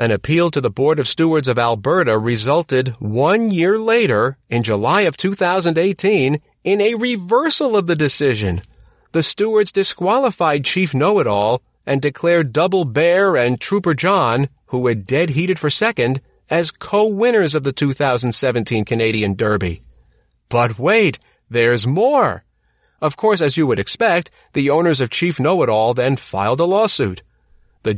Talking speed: 145 wpm